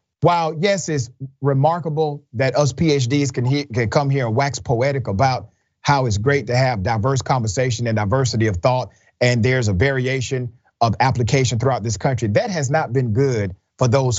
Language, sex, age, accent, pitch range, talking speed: English, male, 40-59, American, 115-155 Hz, 180 wpm